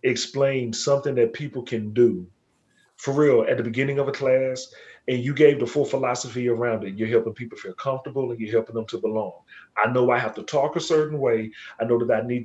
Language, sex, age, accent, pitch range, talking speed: English, male, 40-59, American, 130-180 Hz, 225 wpm